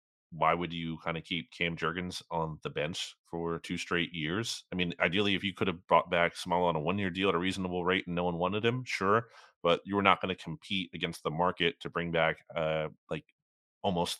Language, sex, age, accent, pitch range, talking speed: English, male, 30-49, American, 80-100 Hz, 235 wpm